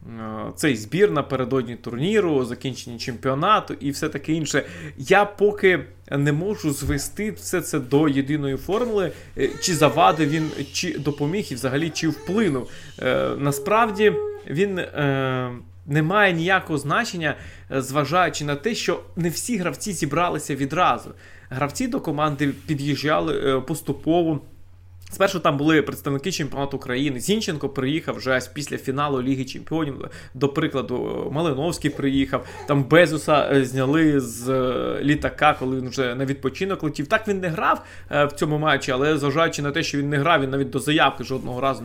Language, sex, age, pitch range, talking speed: Ukrainian, male, 20-39, 130-160 Hz, 145 wpm